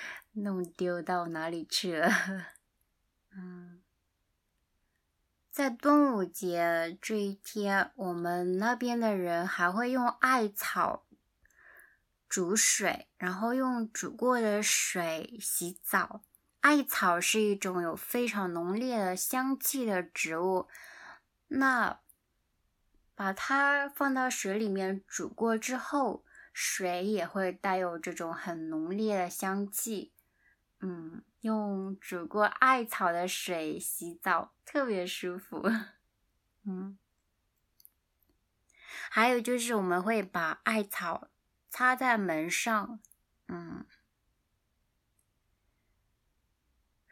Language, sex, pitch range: Chinese, female, 180-240 Hz